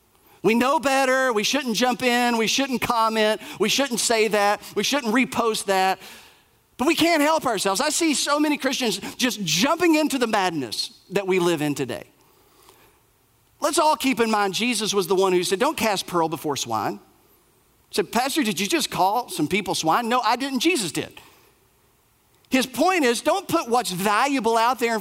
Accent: American